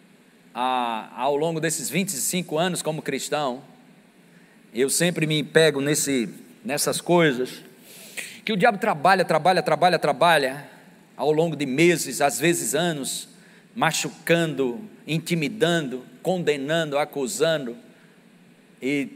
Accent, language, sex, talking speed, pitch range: Brazilian, Portuguese, male, 105 wpm, 150-210 Hz